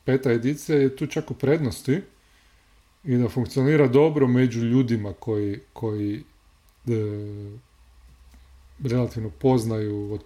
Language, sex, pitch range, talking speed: Croatian, male, 115-145 Hz, 105 wpm